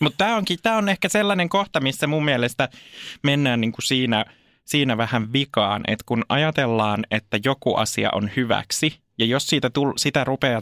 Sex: male